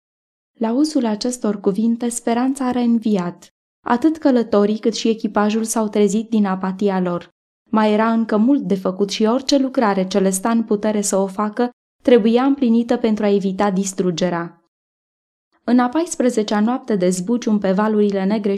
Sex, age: female, 20-39